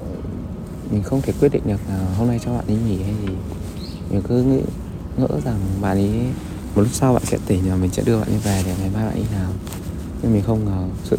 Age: 20-39